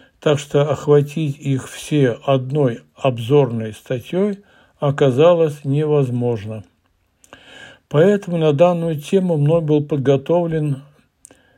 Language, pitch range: Russian, 135-160 Hz